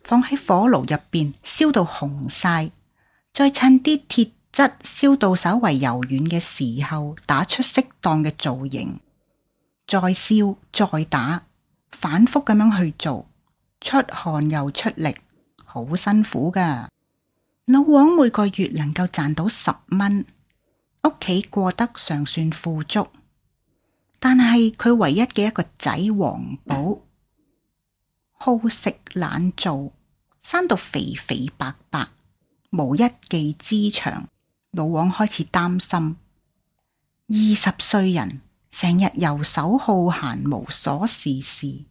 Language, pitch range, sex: Chinese, 155-225 Hz, female